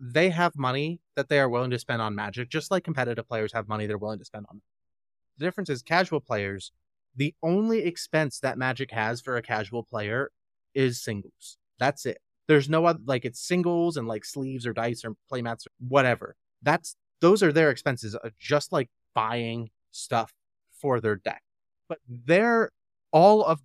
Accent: American